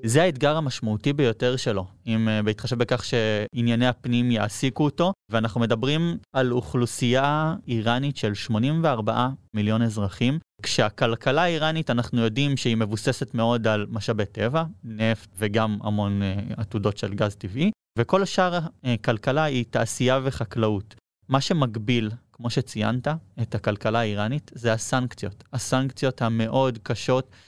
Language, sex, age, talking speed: Hebrew, male, 20-39, 120 wpm